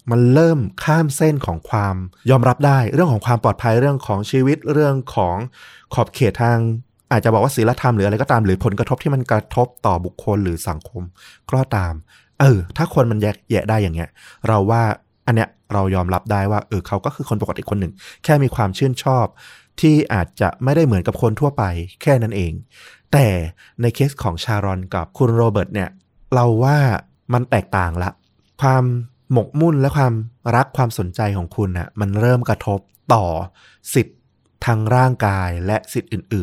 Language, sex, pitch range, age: Thai, male, 95-125 Hz, 20-39